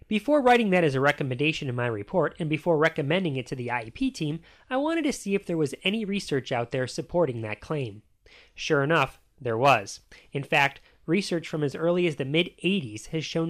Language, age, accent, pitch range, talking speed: English, 30-49, American, 130-200 Hz, 205 wpm